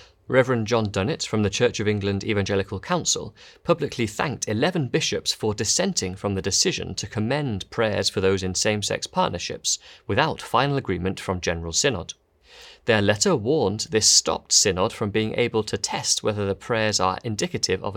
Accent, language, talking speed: British, English, 165 wpm